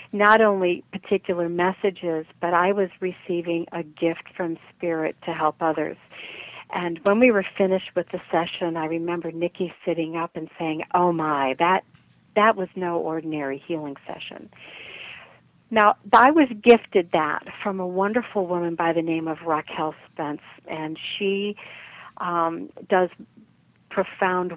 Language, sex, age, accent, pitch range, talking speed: English, female, 50-69, American, 165-195 Hz, 145 wpm